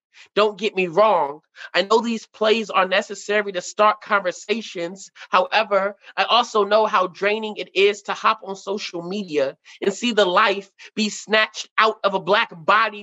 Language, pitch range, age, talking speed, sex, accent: English, 185-220 Hz, 20-39, 170 wpm, male, American